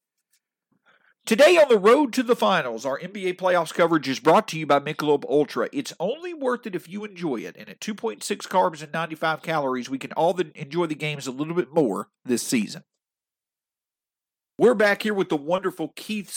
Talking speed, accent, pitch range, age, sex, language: 190 wpm, American, 145-195 Hz, 50-69, male, English